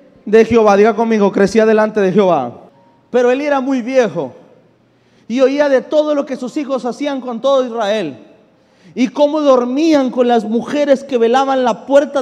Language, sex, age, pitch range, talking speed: Spanish, male, 40-59, 220-275 Hz, 170 wpm